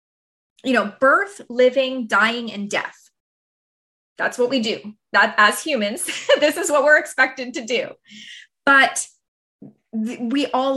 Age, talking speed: 20-39, 140 wpm